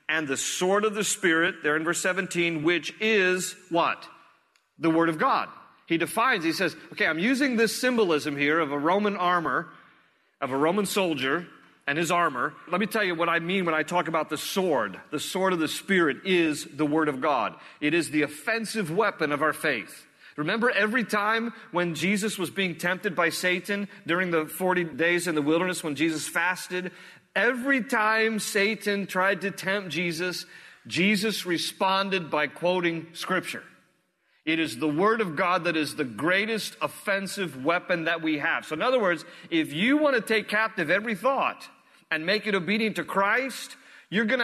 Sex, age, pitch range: male, 40-59, 165-215 Hz